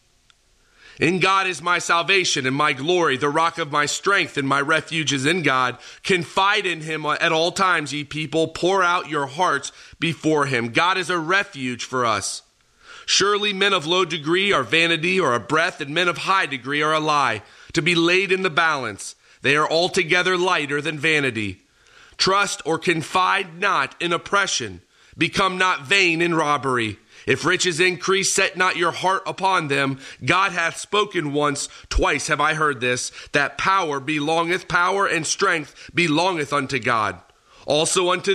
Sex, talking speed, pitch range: male, 170 wpm, 145-180 Hz